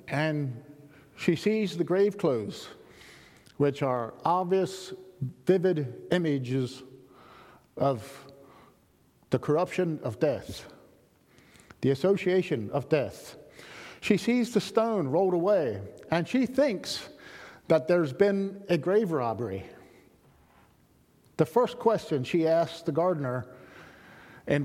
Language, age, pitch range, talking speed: English, 50-69, 145-210 Hz, 105 wpm